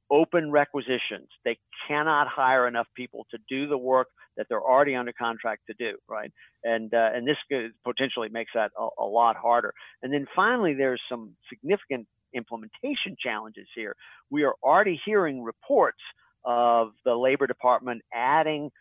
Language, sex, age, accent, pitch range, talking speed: English, male, 50-69, American, 115-145 Hz, 155 wpm